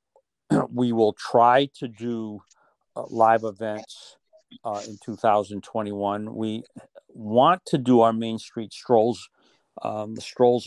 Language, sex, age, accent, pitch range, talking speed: English, male, 50-69, American, 105-125 Hz, 125 wpm